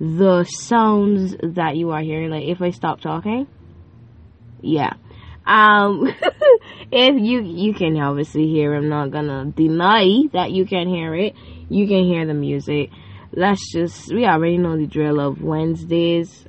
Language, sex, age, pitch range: Japanese, female, 10-29, 145-205 Hz